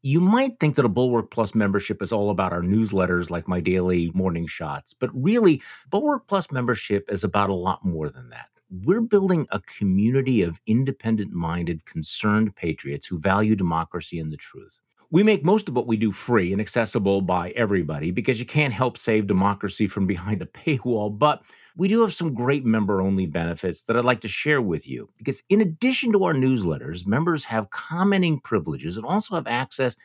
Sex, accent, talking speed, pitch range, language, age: male, American, 190 wpm, 95-140 Hz, English, 50-69